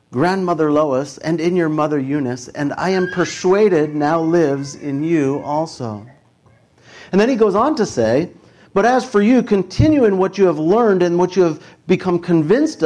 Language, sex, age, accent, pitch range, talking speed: English, male, 50-69, American, 160-210 Hz, 180 wpm